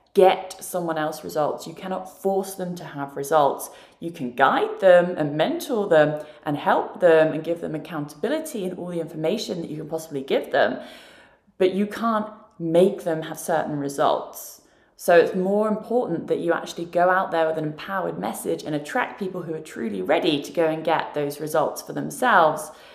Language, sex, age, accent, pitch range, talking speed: English, female, 20-39, British, 155-205 Hz, 190 wpm